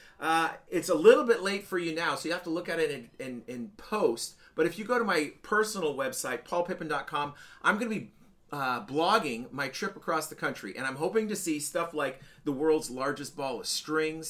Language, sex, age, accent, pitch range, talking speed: English, male, 40-59, American, 135-165 Hz, 215 wpm